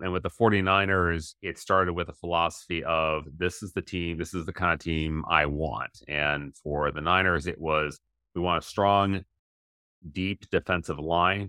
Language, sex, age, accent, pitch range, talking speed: English, male, 30-49, American, 75-95 Hz, 185 wpm